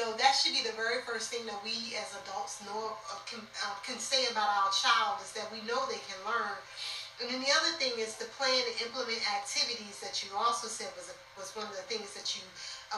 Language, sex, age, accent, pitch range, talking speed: English, female, 30-49, American, 210-265 Hz, 245 wpm